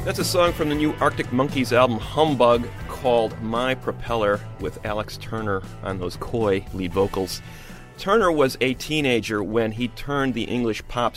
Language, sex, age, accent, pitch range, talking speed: English, male, 30-49, American, 100-130 Hz, 165 wpm